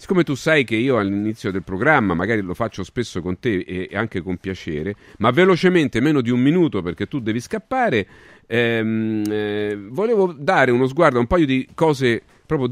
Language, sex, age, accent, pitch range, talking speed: Italian, male, 40-59, native, 95-135 Hz, 190 wpm